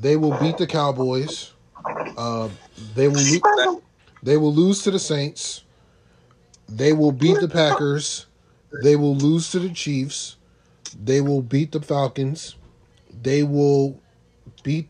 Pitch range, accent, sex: 115-150 Hz, American, male